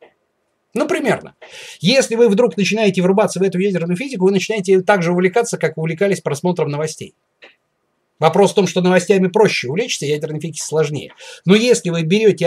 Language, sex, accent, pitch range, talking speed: Russian, male, native, 145-195 Hz, 170 wpm